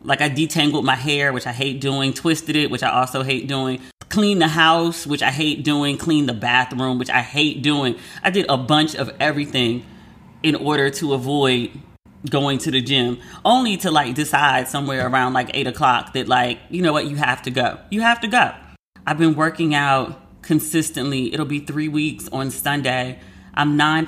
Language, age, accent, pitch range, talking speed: English, 30-49, American, 135-165 Hz, 195 wpm